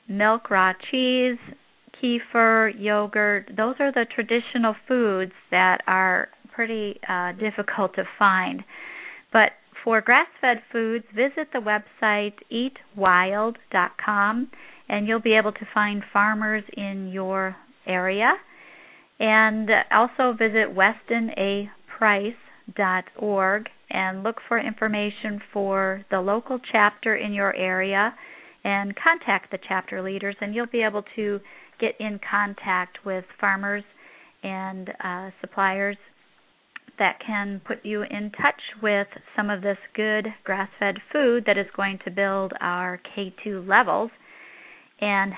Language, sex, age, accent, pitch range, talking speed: English, female, 40-59, American, 195-230 Hz, 120 wpm